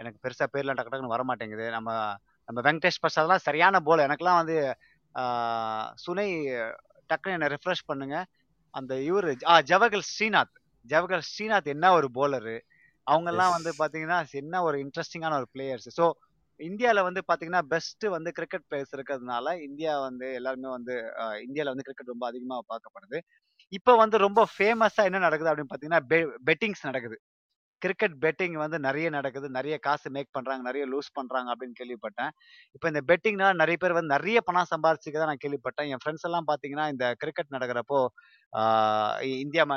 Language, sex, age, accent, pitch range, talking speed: Tamil, male, 20-39, native, 130-175 Hz, 150 wpm